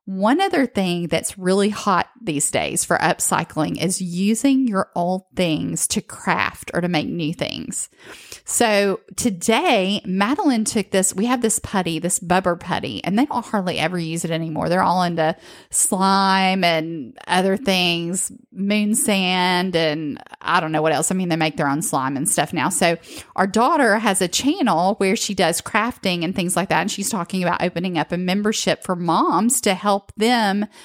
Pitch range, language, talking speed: 175-215 Hz, English, 185 wpm